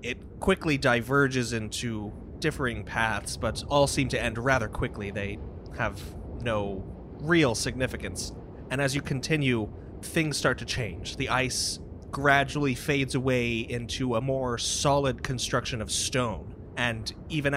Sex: male